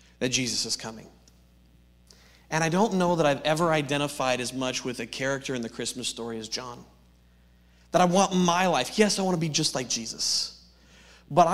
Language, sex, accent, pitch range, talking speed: English, male, American, 125-175 Hz, 185 wpm